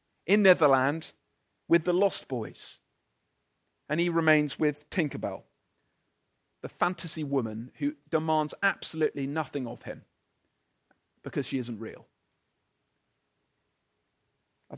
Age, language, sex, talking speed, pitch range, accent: 40-59, English, male, 100 wpm, 140-185 Hz, British